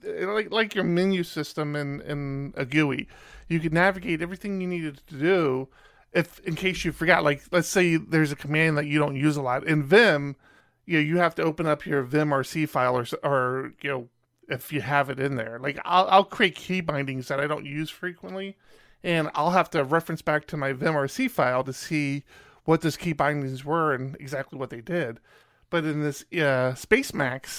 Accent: American